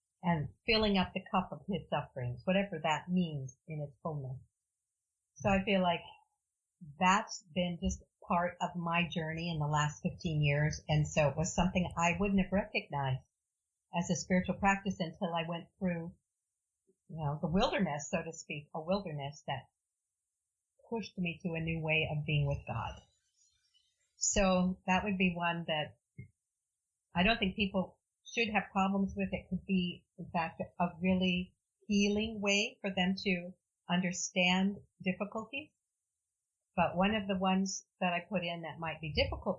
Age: 50-69